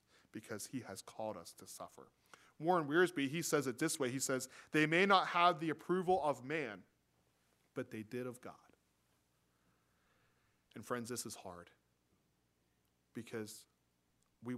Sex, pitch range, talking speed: male, 105-160 Hz, 150 wpm